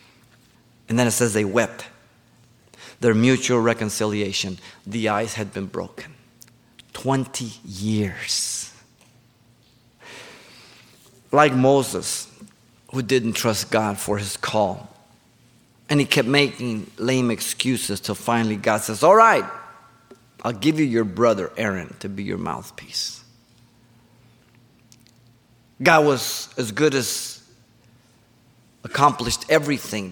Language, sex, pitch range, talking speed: English, male, 115-130 Hz, 105 wpm